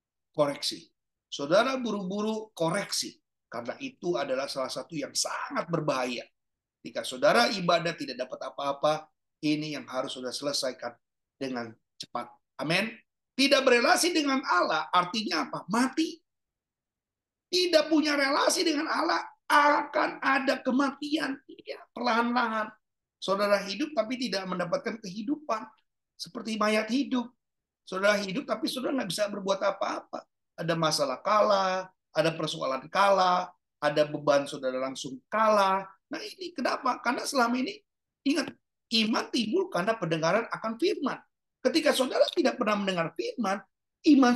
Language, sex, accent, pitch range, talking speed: Indonesian, male, native, 185-295 Hz, 120 wpm